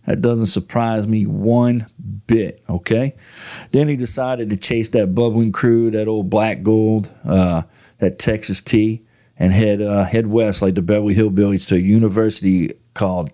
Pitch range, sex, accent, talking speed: 100-120 Hz, male, American, 160 wpm